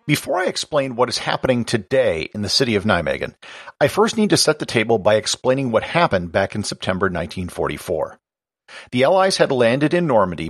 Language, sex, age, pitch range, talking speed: English, male, 50-69, 100-155 Hz, 190 wpm